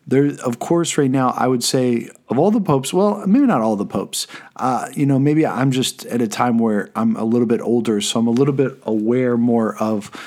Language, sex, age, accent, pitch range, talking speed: English, male, 40-59, American, 115-145 Hz, 240 wpm